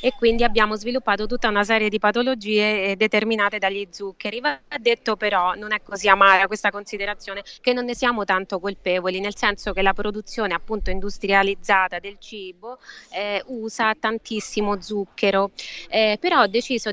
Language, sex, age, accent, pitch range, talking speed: Italian, female, 20-39, native, 205-245 Hz, 155 wpm